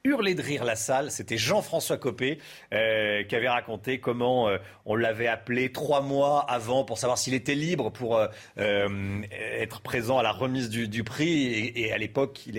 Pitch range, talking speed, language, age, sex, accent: 105-140 Hz, 195 wpm, French, 40-59, male, French